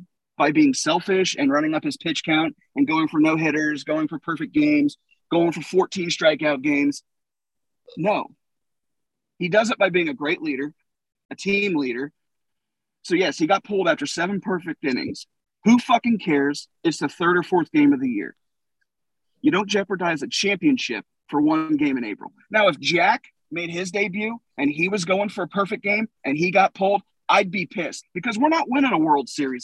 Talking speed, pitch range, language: 190 wpm, 165-260 Hz, English